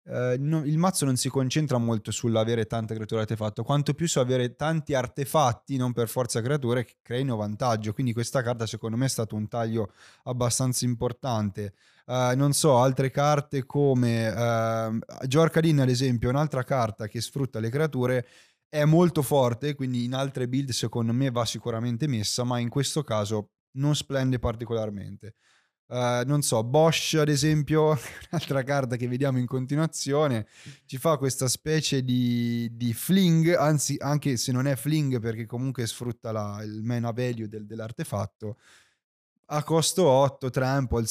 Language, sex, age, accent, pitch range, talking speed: Italian, male, 20-39, native, 115-140 Hz, 160 wpm